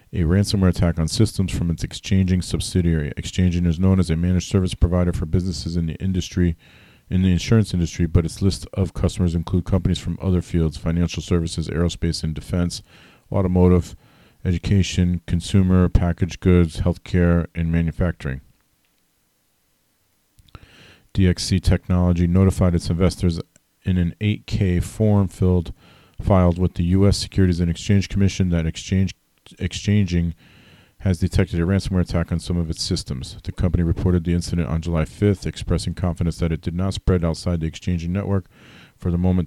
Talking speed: 155 wpm